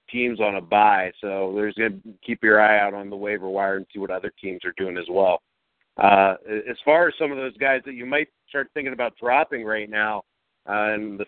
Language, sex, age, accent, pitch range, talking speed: English, male, 50-69, American, 105-120 Hz, 245 wpm